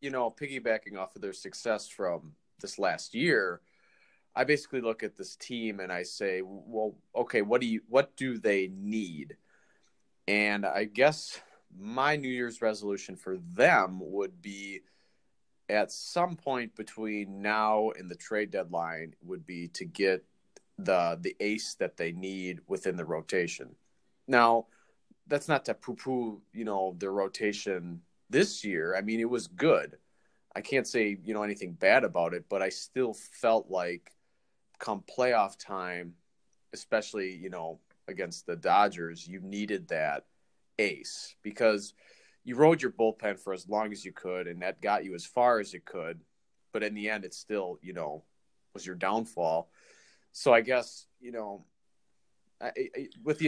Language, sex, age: English, male, 30-49